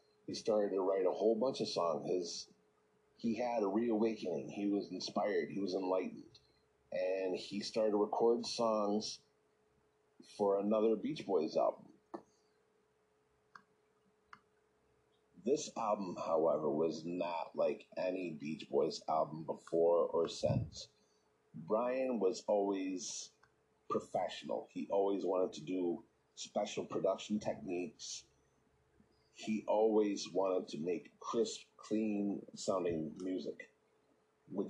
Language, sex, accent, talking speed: English, male, American, 115 wpm